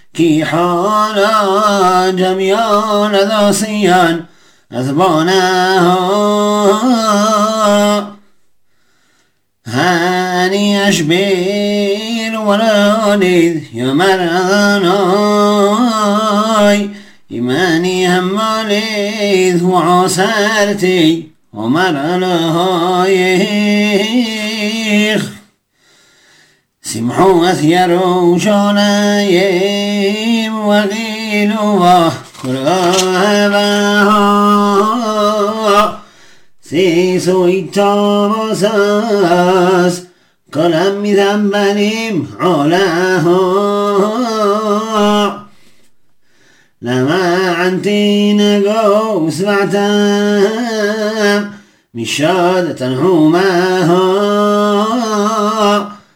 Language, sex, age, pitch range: Hebrew, male, 40-59, 180-210 Hz